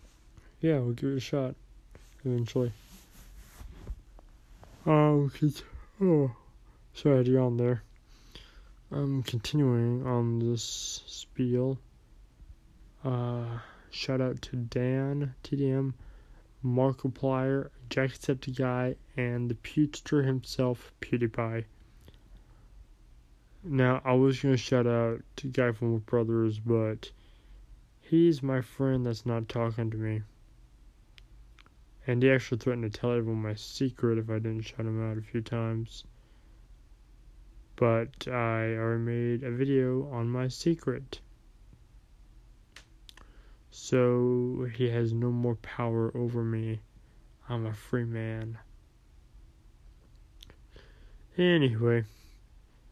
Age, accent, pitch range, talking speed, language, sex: 20-39, American, 110-130 Hz, 105 wpm, English, male